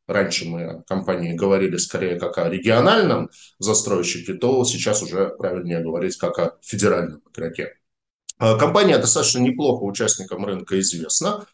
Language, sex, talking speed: Russian, male, 130 wpm